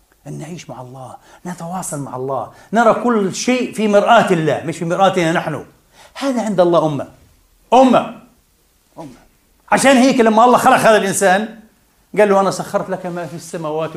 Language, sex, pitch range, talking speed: Arabic, male, 160-215 Hz, 165 wpm